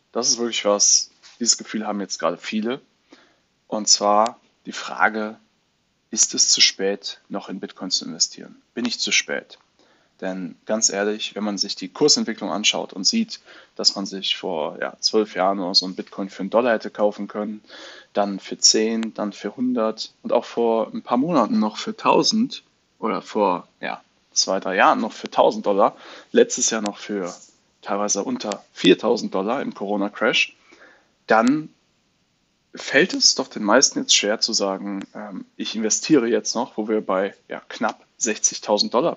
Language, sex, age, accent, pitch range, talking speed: German, male, 20-39, German, 105-125 Hz, 170 wpm